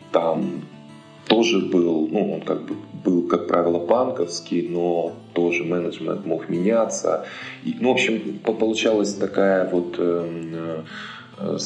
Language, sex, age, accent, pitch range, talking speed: Russian, male, 20-39, native, 85-105 Hz, 125 wpm